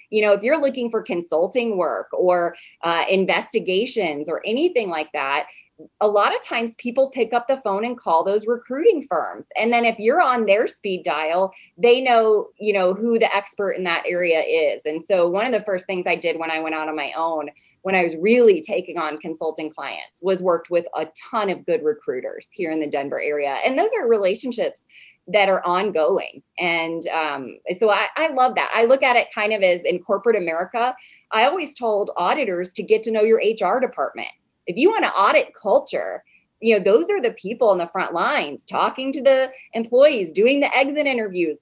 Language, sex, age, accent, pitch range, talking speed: English, female, 20-39, American, 180-260 Hz, 210 wpm